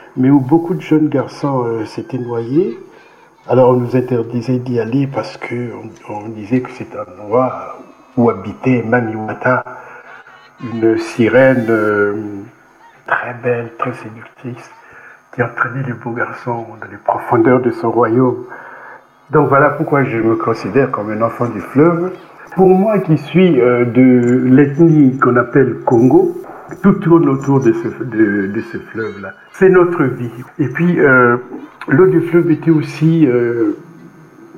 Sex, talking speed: male, 150 wpm